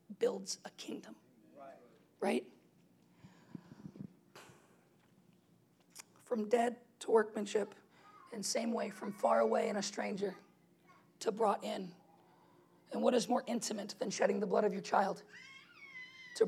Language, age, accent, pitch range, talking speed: English, 40-59, American, 205-245 Hz, 125 wpm